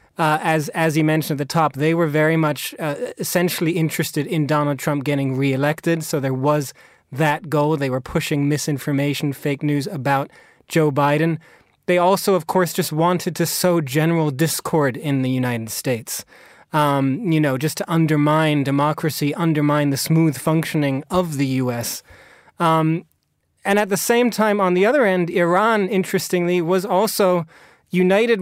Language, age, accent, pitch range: English, 30-49, American, 145-175 Hz